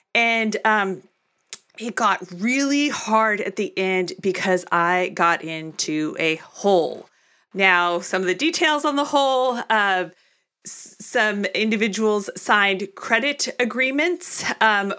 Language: English